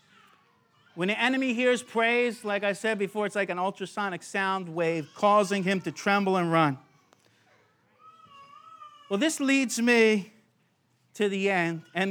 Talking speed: 145 wpm